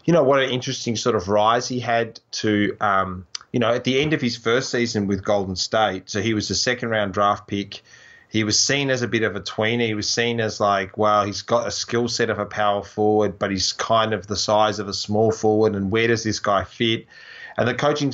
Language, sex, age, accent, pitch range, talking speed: English, male, 20-39, Australian, 105-120 Hz, 245 wpm